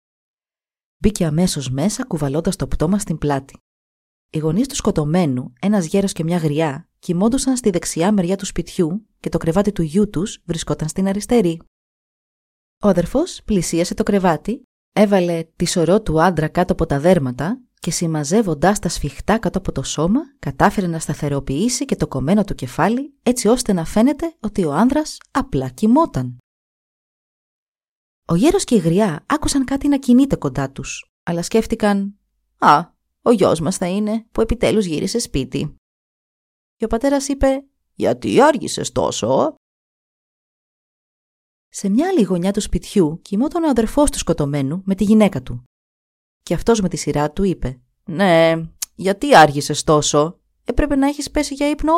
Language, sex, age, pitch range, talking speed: Greek, female, 20-39, 155-225 Hz, 150 wpm